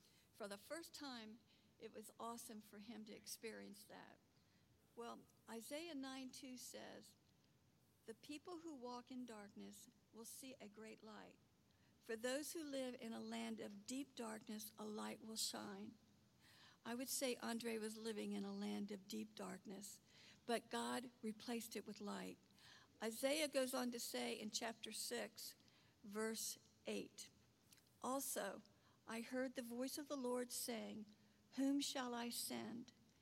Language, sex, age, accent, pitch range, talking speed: English, female, 60-79, American, 215-255 Hz, 150 wpm